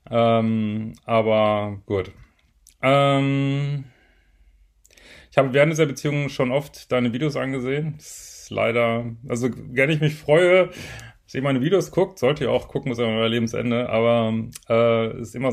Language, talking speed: German, 160 wpm